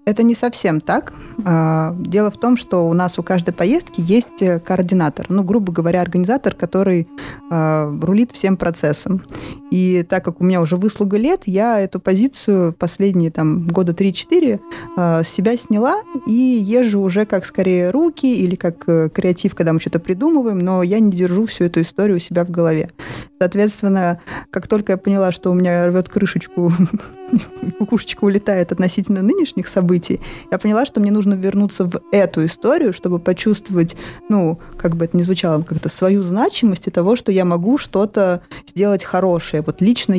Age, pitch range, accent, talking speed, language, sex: 20-39, 165-205 Hz, native, 165 wpm, Russian, female